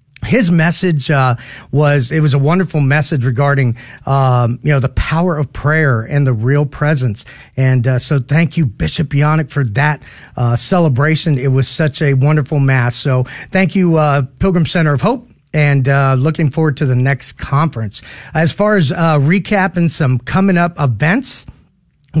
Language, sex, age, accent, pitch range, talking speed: English, male, 40-59, American, 135-175 Hz, 175 wpm